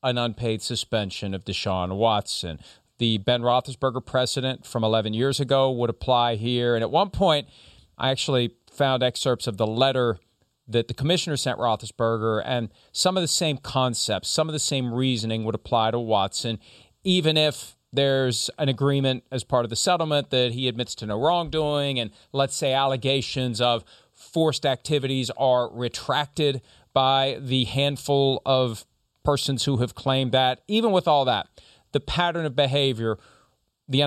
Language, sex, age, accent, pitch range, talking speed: English, male, 40-59, American, 115-140 Hz, 160 wpm